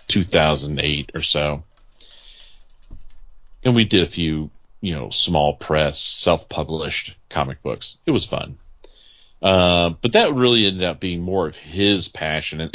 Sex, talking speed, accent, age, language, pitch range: male, 140 wpm, American, 40-59, English, 80-95 Hz